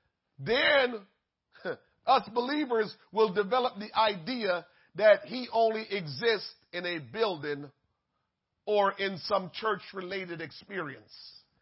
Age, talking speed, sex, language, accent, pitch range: 40-59, 100 wpm, male, English, American, 175-235 Hz